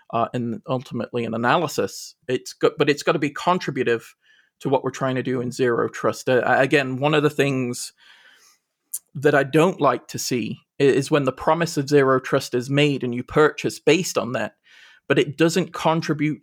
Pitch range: 130-155 Hz